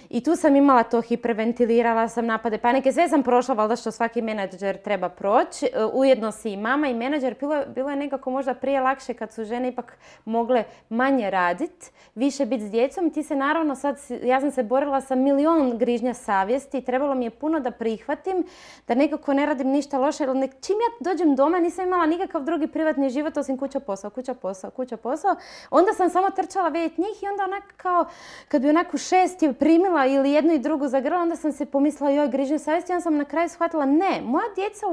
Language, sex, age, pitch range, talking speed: Croatian, female, 20-39, 255-335 Hz, 200 wpm